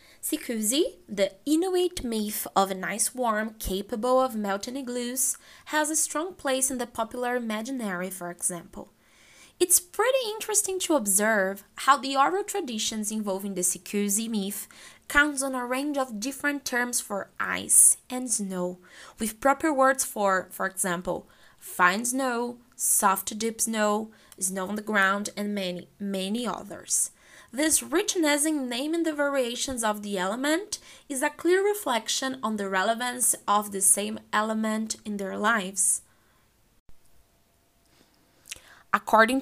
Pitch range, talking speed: 205-275 Hz, 135 wpm